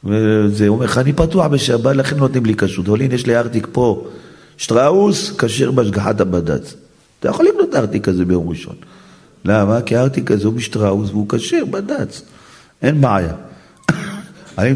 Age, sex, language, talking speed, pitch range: 40-59, male, Hebrew, 165 wpm, 100-135 Hz